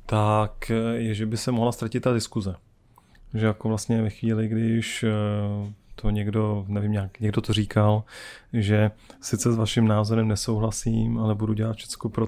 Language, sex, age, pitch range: Czech, male, 30-49, 105-115 Hz